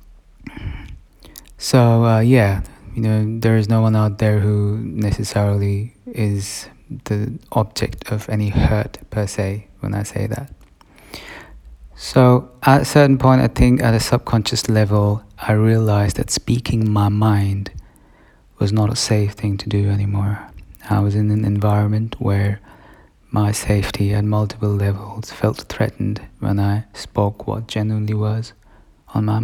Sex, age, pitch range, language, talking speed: male, 20-39, 100-115 Hz, English, 145 wpm